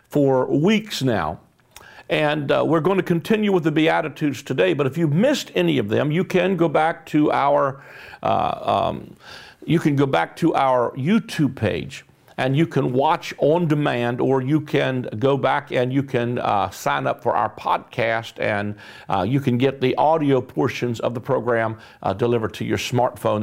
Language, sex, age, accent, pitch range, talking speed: English, male, 50-69, American, 120-160 Hz, 185 wpm